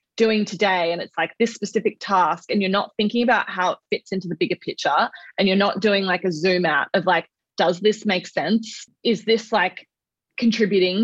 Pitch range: 170-210 Hz